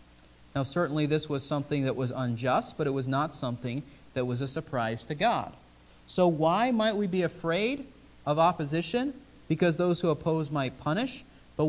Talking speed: 175 wpm